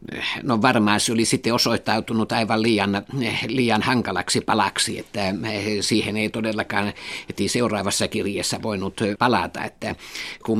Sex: male